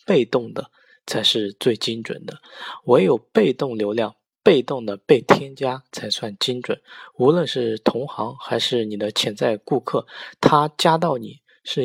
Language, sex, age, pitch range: Chinese, male, 20-39, 110-135 Hz